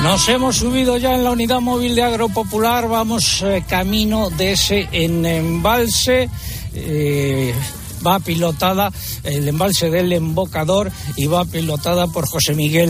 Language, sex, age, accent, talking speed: Spanish, male, 60-79, Spanish, 140 wpm